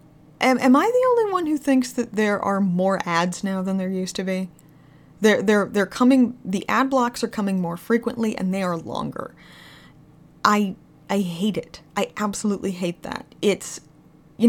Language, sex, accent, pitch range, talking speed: English, female, American, 180-215 Hz, 180 wpm